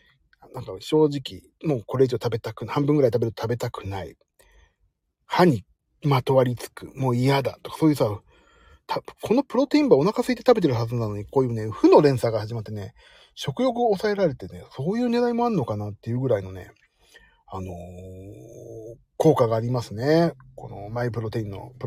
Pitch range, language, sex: 110-145 Hz, Japanese, male